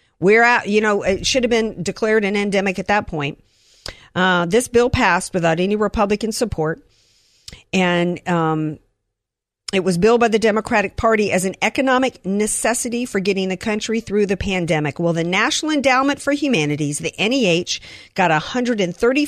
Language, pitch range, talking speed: English, 180-235 Hz, 170 wpm